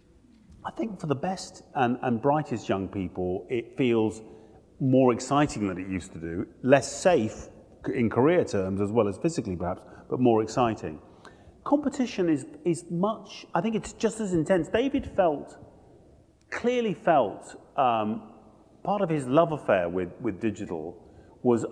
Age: 30-49